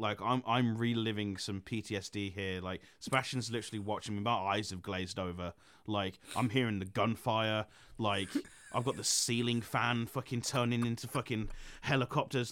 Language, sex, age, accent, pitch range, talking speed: English, male, 30-49, British, 105-135 Hz, 160 wpm